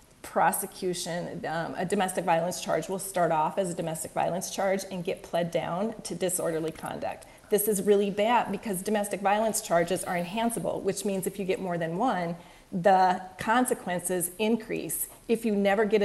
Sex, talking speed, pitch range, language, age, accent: female, 170 wpm, 175-215 Hz, English, 30-49, American